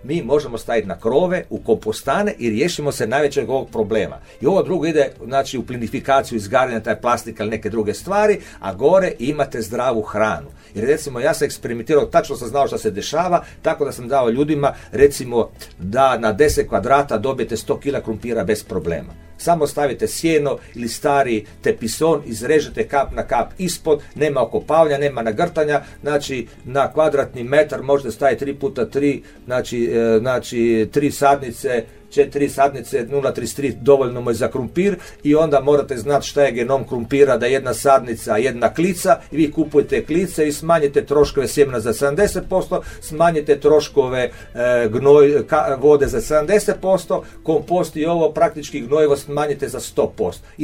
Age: 50-69